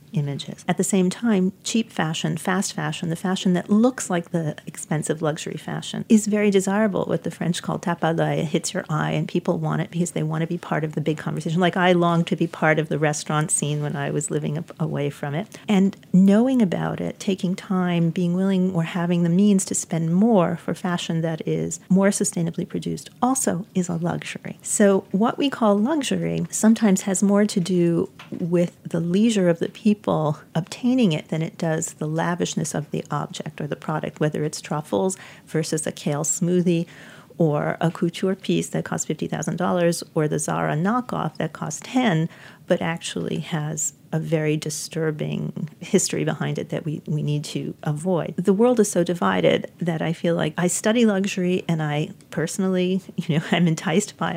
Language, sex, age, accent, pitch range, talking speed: English, female, 40-59, American, 160-195 Hz, 190 wpm